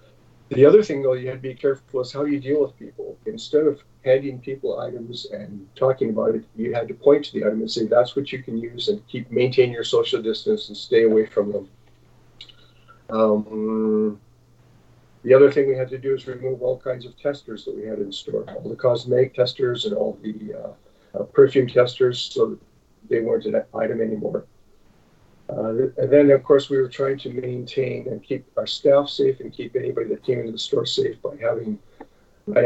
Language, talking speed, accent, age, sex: English, 205 wpm, American, 50-69, male